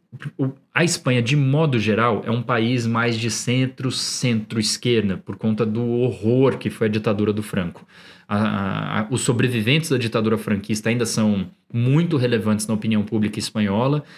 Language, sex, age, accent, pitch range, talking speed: Portuguese, male, 20-39, Brazilian, 110-145 Hz, 155 wpm